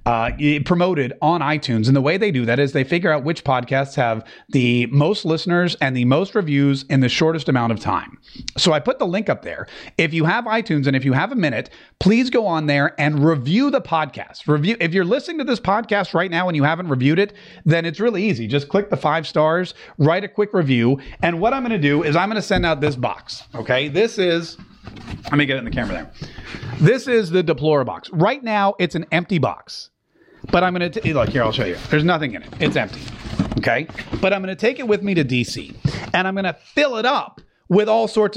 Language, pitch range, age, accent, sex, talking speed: English, 140-185 Hz, 30-49, American, male, 240 wpm